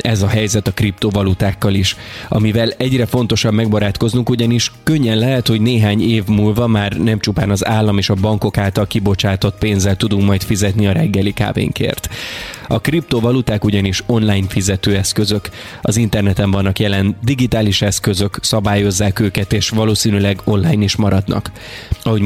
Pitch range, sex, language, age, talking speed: 100-115 Hz, male, Hungarian, 20-39, 145 wpm